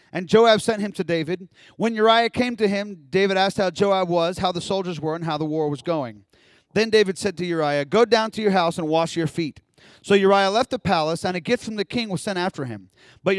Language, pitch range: English, 160-210 Hz